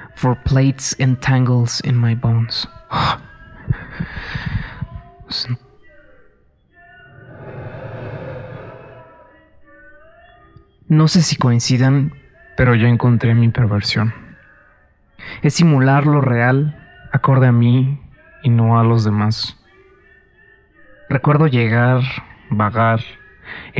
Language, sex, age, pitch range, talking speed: English, male, 30-49, 120-140 Hz, 80 wpm